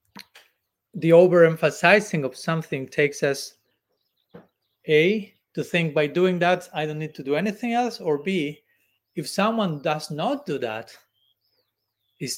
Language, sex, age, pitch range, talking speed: English, male, 40-59, 130-165 Hz, 135 wpm